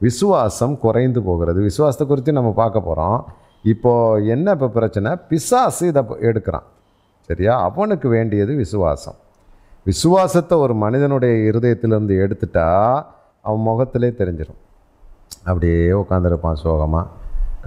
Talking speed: 100 wpm